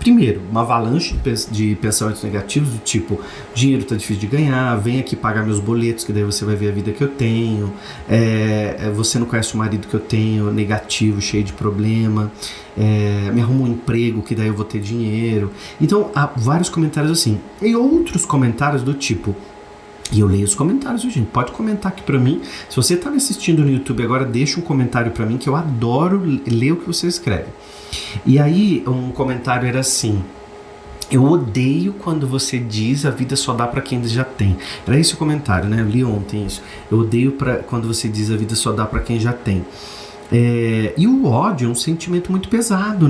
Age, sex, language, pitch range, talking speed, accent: 30-49, male, Portuguese, 110-155 Hz, 195 wpm, Brazilian